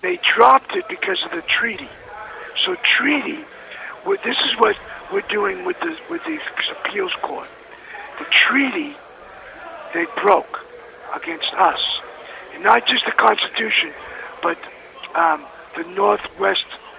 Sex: male